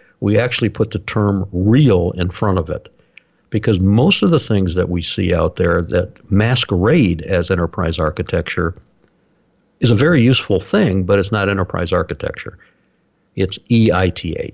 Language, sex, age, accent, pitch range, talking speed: English, male, 50-69, American, 90-115 Hz, 155 wpm